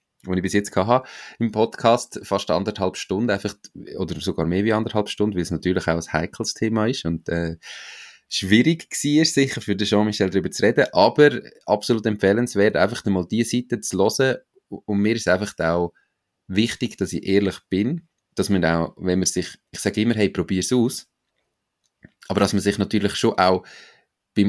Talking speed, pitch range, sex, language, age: 185 wpm, 90-110 Hz, male, German, 30-49